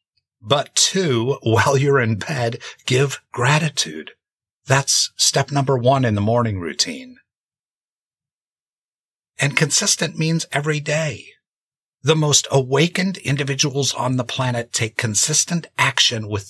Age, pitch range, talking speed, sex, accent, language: 50-69, 110-150 Hz, 115 wpm, male, American, English